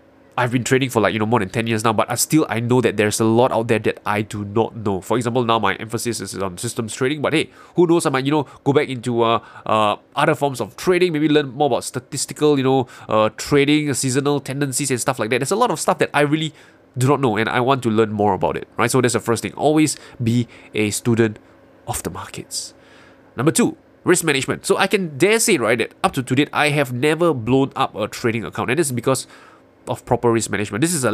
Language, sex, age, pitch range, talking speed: English, male, 20-39, 110-145 Hz, 260 wpm